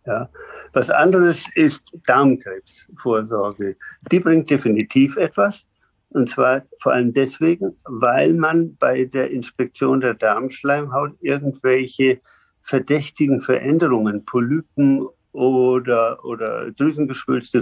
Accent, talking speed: German, 95 wpm